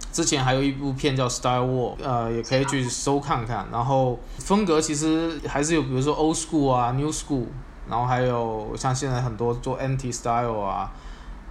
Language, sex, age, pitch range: Chinese, male, 20-39, 120-145 Hz